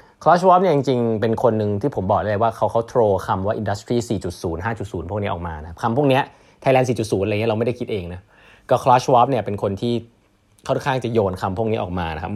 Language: Thai